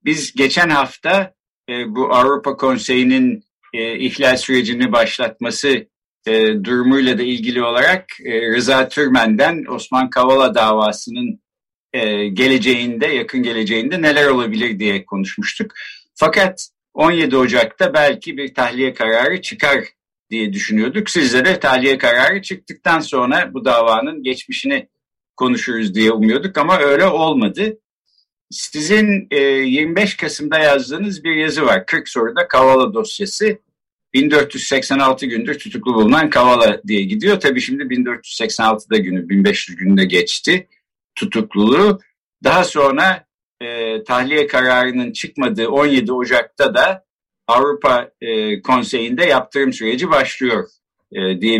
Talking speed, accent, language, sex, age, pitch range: 105 wpm, native, Turkish, male, 60-79, 120-190 Hz